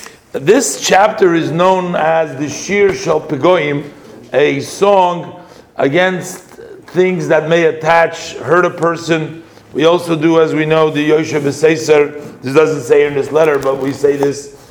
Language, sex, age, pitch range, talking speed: English, male, 50-69, 145-170 Hz, 150 wpm